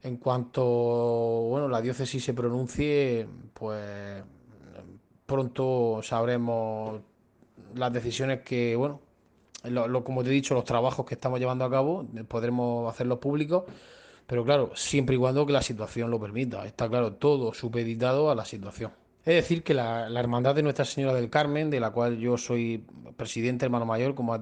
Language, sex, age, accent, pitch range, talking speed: Spanish, male, 20-39, Spanish, 120-140 Hz, 160 wpm